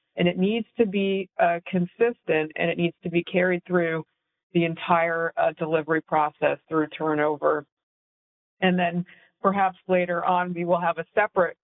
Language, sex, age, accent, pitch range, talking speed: English, female, 40-59, American, 160-185 Hz, 160 wpm